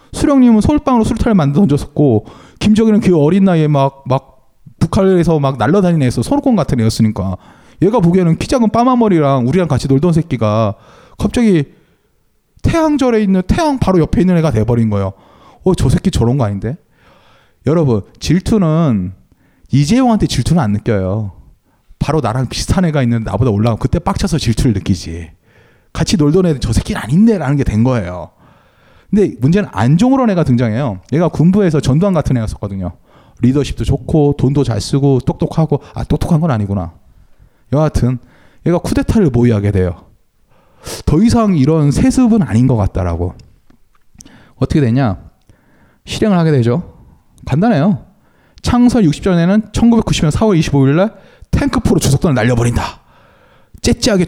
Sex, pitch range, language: male, 115-185 Hz, Korean